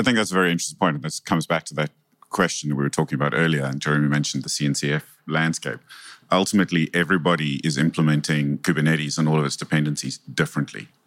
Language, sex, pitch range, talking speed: English, male, 75-95 Hz, 195 wpm